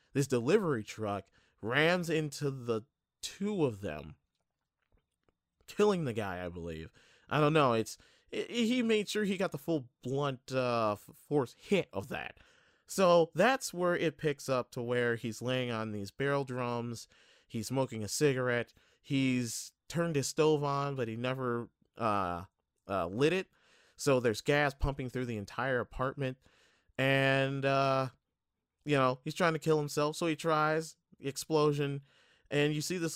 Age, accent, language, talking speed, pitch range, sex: 30-49, American, English, 160 wpm, 115-155 Hz, male